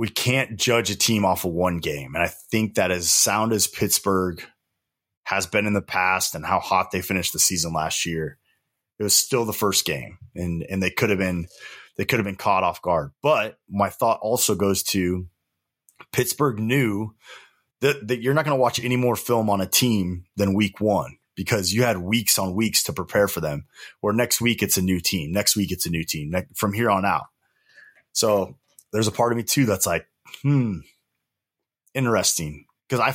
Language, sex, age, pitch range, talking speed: English, male, 20-39, 90-115 Hz, 205 wpm